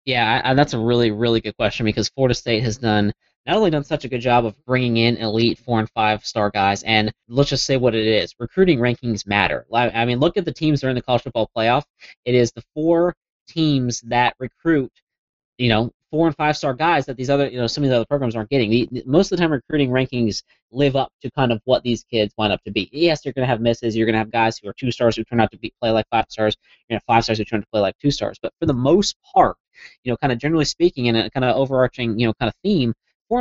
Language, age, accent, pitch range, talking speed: English, 20-39, American, 115-140 Hz, 280 wpm